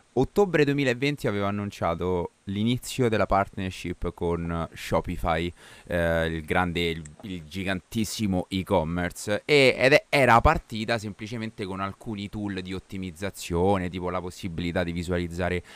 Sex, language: male, Italian